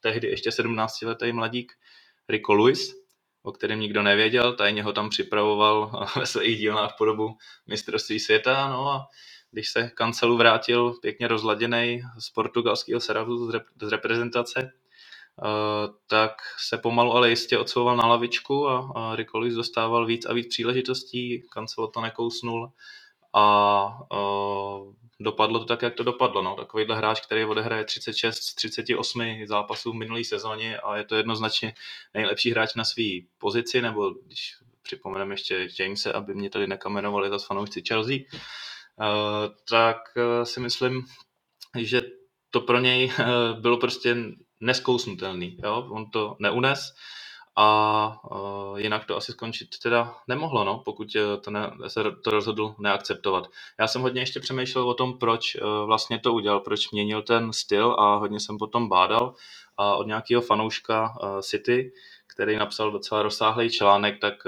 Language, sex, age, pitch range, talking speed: Slovak, male, 20-39, 105-120 Hz, 150 wpm